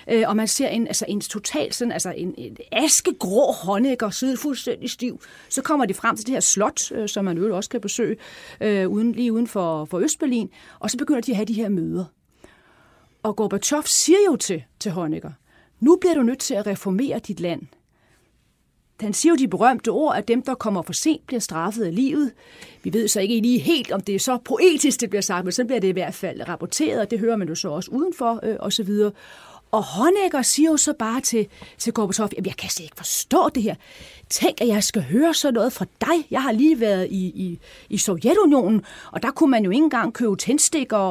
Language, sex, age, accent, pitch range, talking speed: Danish, female, 30-49, native, 195-265 Hz, 225 wpm